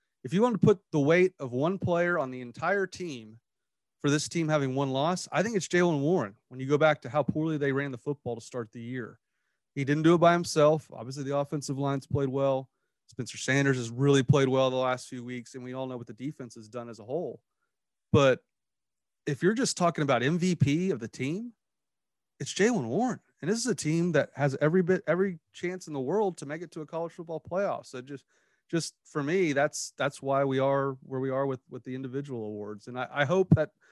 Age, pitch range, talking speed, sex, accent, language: 30-49, 125-155 Hz, 235 wpm, male, American, English